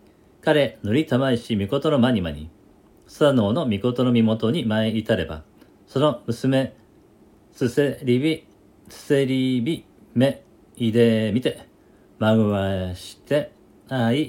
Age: 40-59